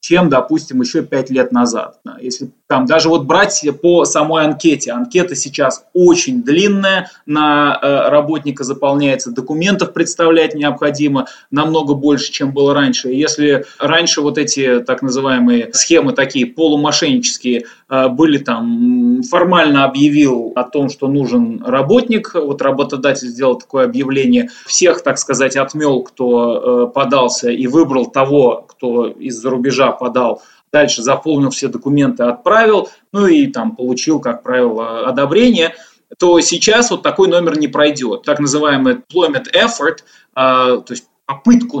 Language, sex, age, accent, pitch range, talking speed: Russian, male, 20-39, native, 135-185 Hz, 125 wpm